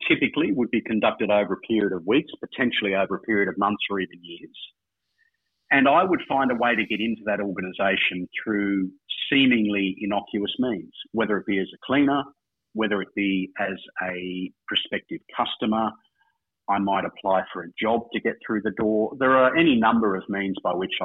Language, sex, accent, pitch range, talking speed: English, male, Australian, 95-125 Hz, 185 wpm